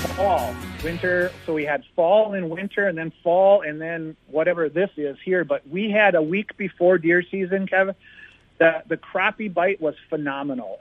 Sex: male